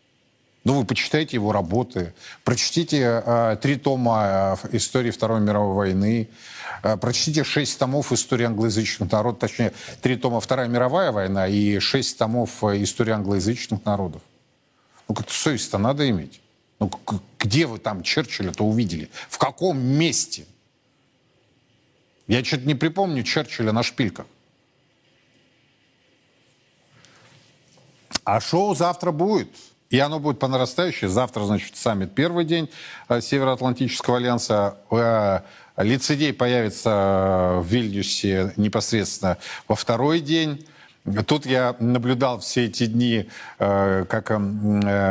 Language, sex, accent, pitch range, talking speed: Russian, male, native, 105-135 Hz, 110 wpm